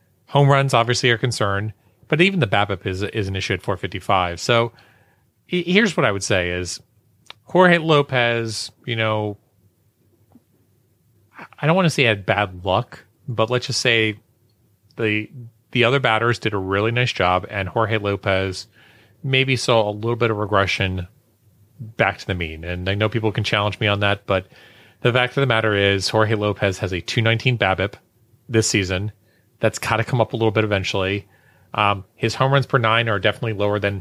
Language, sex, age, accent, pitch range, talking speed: English, male, 30-49, American, 100-120 Hz, 185 wpm